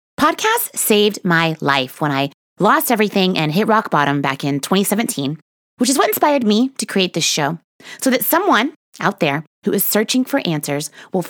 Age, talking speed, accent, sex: 30-49, 185 wpm, American, female